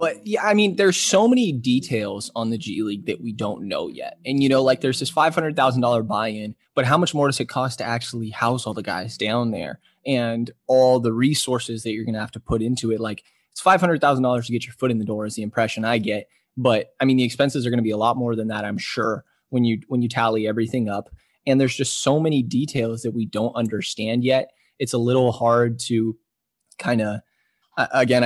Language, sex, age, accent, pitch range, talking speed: English, male, 20-39, American, 115-130 Hz, 230 wpm